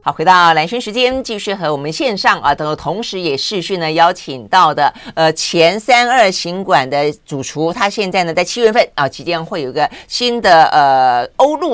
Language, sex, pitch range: Chinese, female, 165-225 Hz